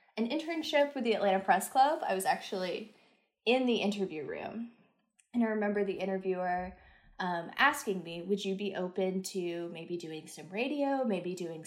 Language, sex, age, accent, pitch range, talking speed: English, female, 10-29, American, 185-250 Hz, 170 wpm